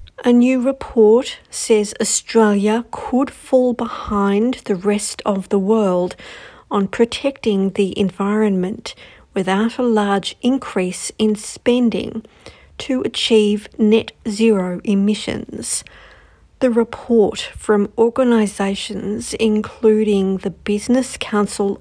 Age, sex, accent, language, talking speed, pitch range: 50-69, female, Australian, English, 100 wpm, 195-235 Hz